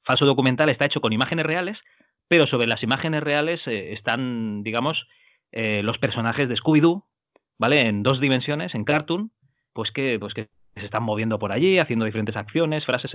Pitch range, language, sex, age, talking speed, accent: 110-150 Hz, Spanish, male, 30-49, 180 wpm, Spanish